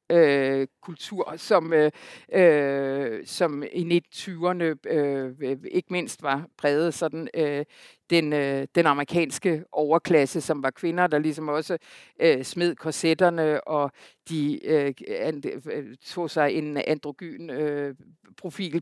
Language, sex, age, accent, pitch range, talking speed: Danish, female, 60-79, native, 145-180 Hz, 105 wpm